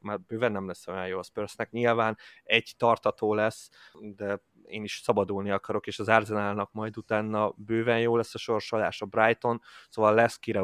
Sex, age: male, 20-39